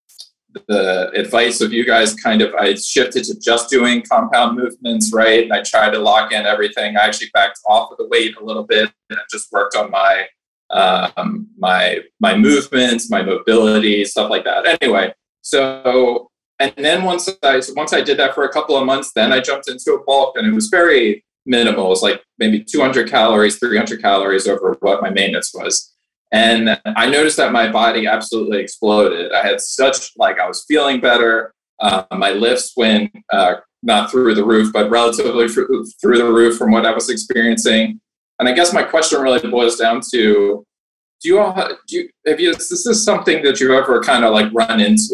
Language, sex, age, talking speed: English, male, 20-39, 200 wpm